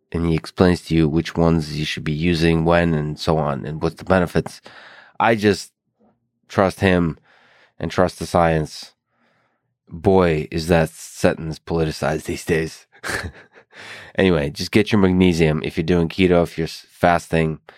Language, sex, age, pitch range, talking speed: English, male, 20-39, 80-90 Hz, 155 wpm